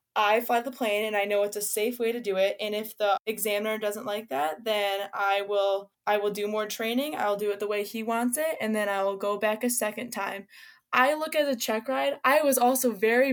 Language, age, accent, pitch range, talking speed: English, 10-29, American, 205-245 Hz, 250 wpm